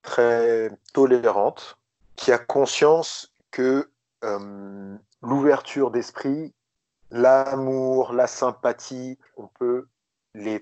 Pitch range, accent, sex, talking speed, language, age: 115-155 Hz, French, male, 85 wpm, French, 30-49